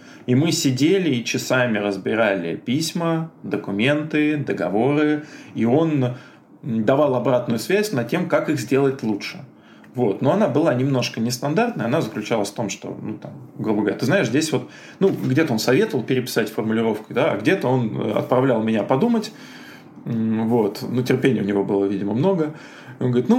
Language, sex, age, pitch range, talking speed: Russian, male, 20-39, 120-160 Hz, 145 wpm